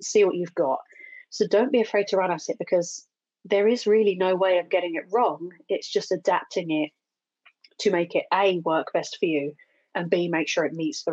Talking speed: 220 wpm